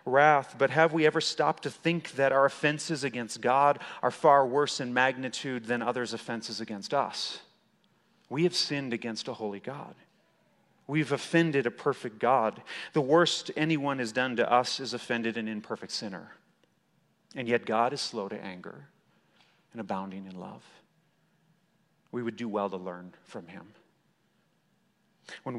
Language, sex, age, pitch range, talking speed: English, male, 40-59, 110-140 Hz, 155 wpm